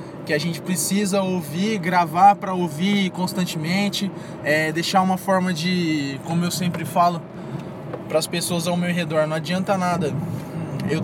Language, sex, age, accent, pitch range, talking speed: Portuguese, male, 20-39, Brazilian, 170-190 Hz, 150 wpm